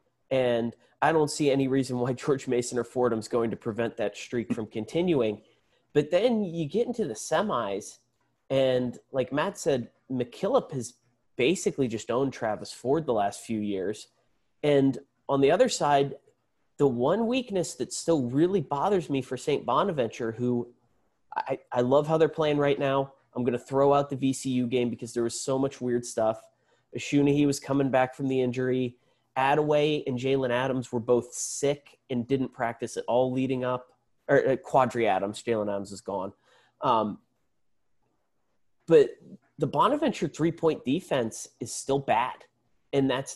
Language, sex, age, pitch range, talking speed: English, male, 30-49, 120-145 Hz, 165 wpm